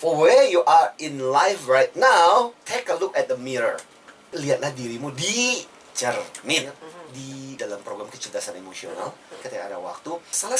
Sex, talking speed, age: male, 155 wpm, 30-49